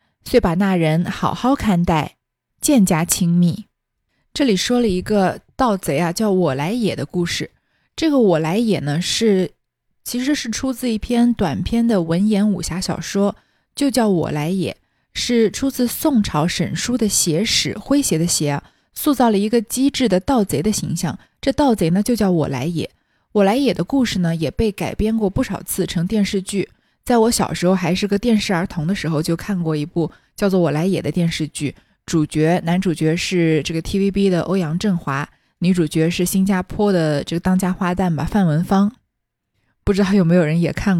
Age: 20-39